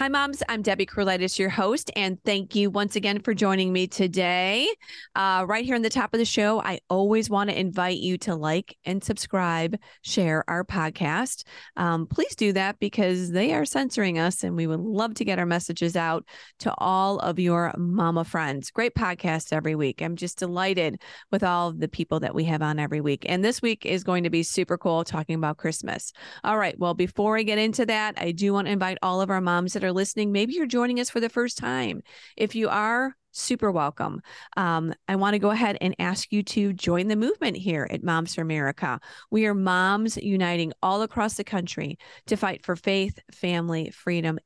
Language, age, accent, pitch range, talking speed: English, 30-49, American, 170-210 Hz, 210 wpm